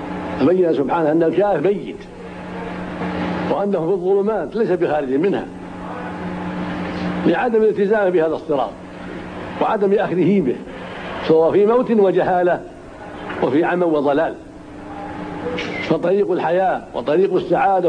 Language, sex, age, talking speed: Arabic, male, 70-89, 95 wpm